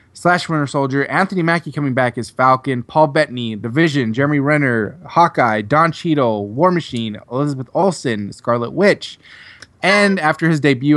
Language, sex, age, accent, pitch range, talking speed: English, male, 20-39, American, 120-165 Hz, 155 wpm